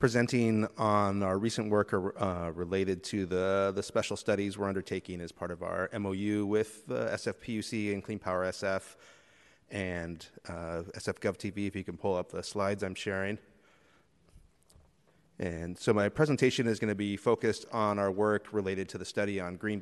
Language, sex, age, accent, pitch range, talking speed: English, male, 30-49, American, 95-110 Hz, 165 wpm